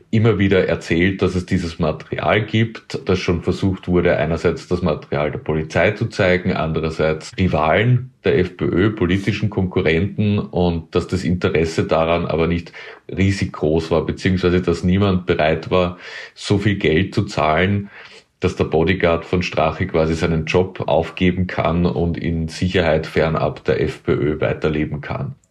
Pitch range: 80-95 Hz